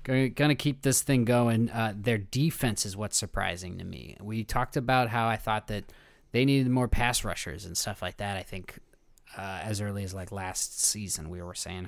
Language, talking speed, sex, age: English, 210 wpm, male, 20-39